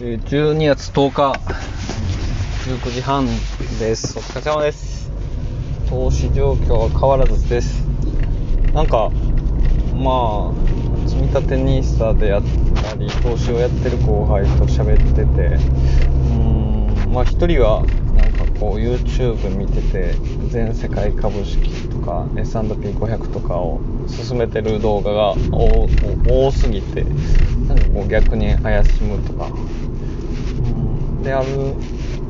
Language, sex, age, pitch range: Japanese, male, 20-39, 100-125 Hz